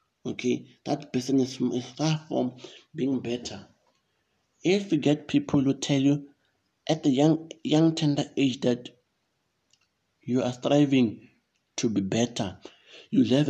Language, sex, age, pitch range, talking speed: English, male, 60-79, 125-150 Hz, 140 wpm